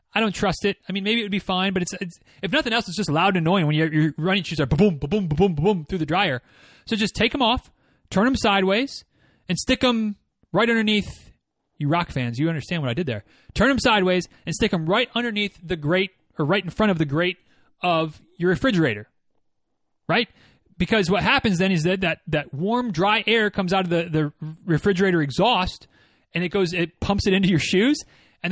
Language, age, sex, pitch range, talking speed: English, 30-49, male, 155-205 Hz, 230 wpm